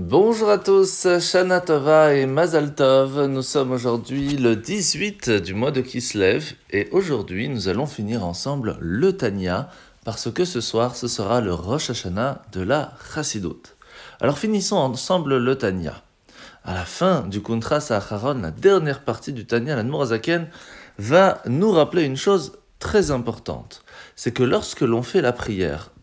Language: French